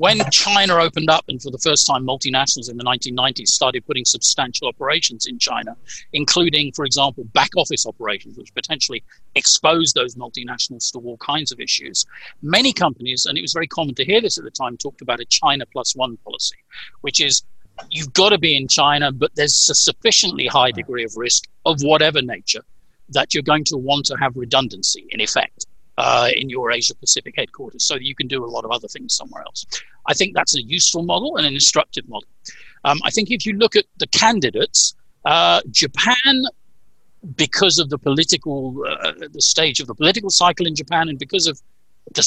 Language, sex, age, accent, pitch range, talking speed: English, male, 50-69, British, 130-170 Hz, 200 wpm